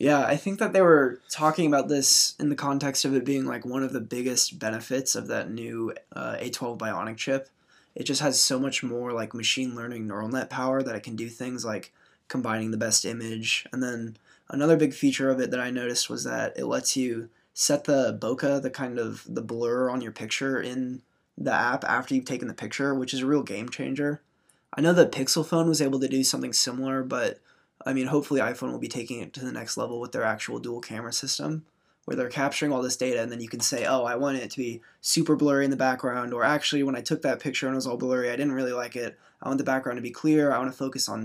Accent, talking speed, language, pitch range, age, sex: American, 250 wpm, English, 120-140 Hz, 20-39, male